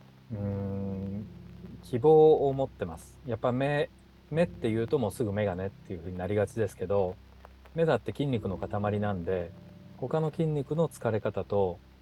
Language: Japanese